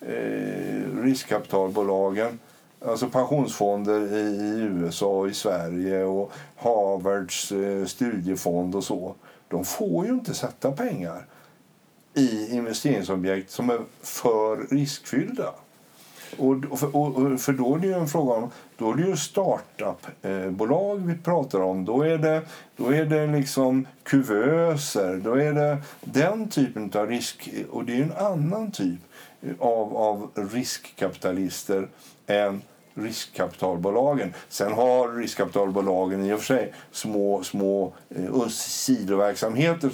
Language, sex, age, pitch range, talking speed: Swedish, male, 60-79, 100-140 Hz, 130 wpm